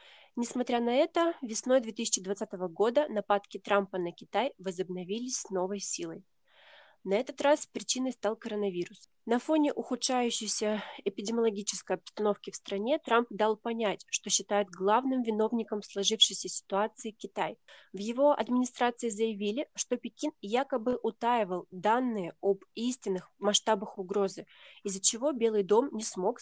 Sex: female